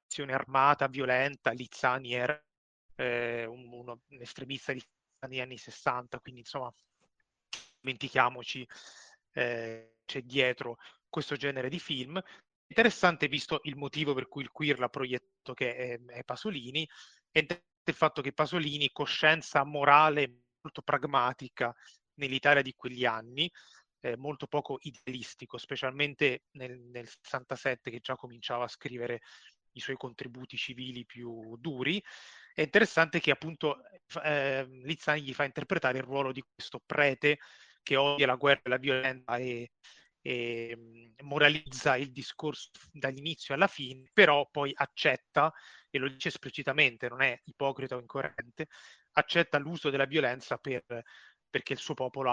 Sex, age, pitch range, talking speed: male, 30-49, 125-145 Hz, 135 wpm